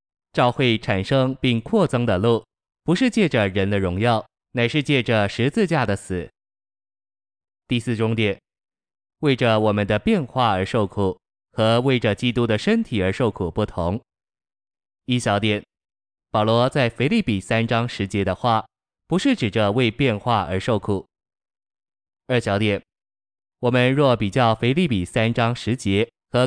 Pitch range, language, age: 100-125 Hz, Chinese, 20-39